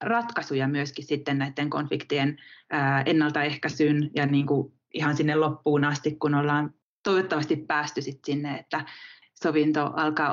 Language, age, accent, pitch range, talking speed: Finnish, 20-39, native, 145-160 Hz, 130 wpm